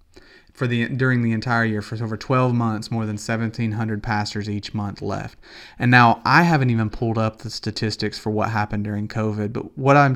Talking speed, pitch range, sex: 200 wpm, 110-130 Hz, male